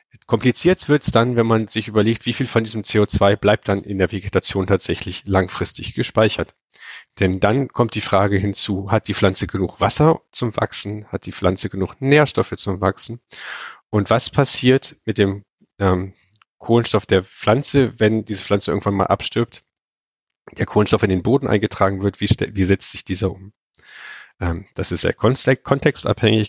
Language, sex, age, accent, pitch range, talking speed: German, male, 40-59, German, 95-120 Hz, 165 wpm